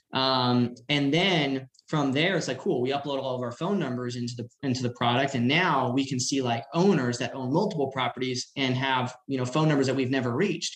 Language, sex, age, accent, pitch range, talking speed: English, male, 20-39, American, 125-155 Hz, 230 wpm